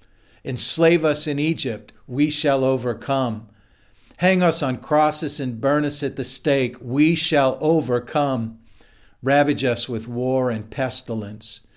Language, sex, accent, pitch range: English, male, American, 110-135 Hz